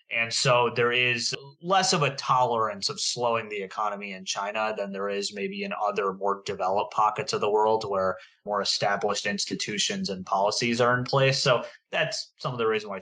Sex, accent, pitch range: male, American, 105-155 Hz